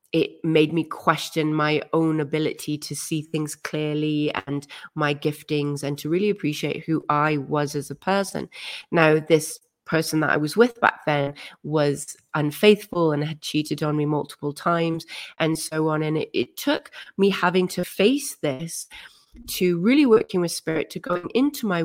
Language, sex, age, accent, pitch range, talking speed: English, female, 30-49, British, 155-185 Hz, 175 wpm